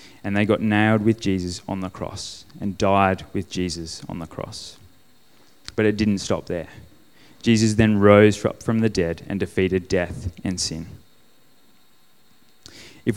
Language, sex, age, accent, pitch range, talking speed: English, male, 20-39, Australian, 95-110 Hz, 150 wpm